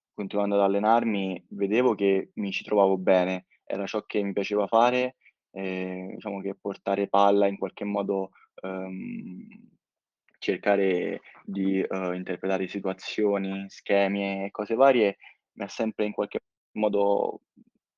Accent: native